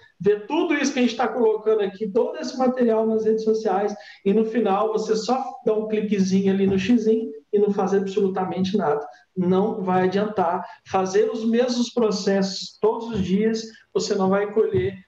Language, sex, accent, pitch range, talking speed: Portuguese, male, Brazilian, 190-230 Hz, 180 wpm